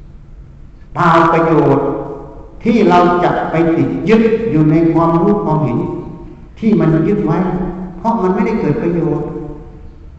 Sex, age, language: male, 60-79, Thai